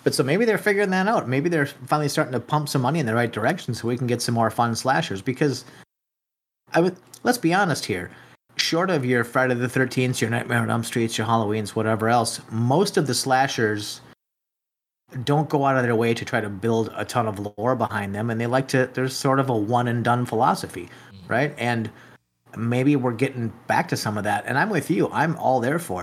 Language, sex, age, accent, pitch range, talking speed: English, male, 30-49, American, 110-130 Hz, 225 wpm